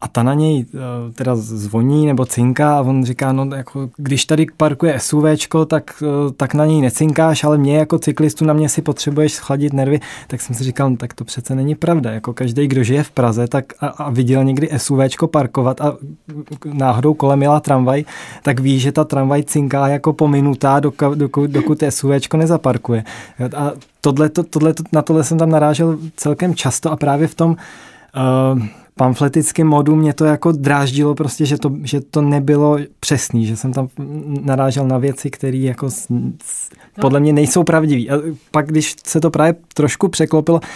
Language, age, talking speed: Czech, 20-39, 180 wpm